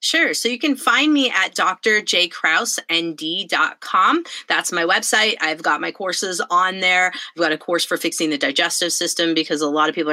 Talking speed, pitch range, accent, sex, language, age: 185 wpm, 165-205 Hz, American, female, English, 30-49